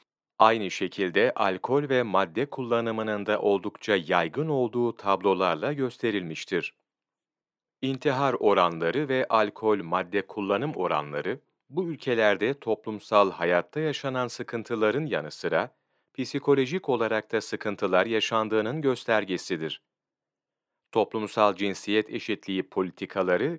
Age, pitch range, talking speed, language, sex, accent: 40-59, 100-130 Hz, 90 wpm, Turkish, male, native